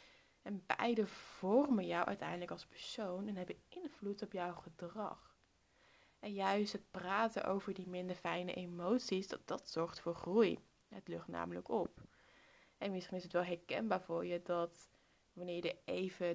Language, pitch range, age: Dutch, 175-205 Hz, 20-39